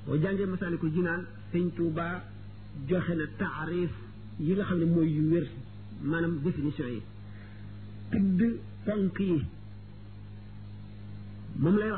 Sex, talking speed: male, 75 wpm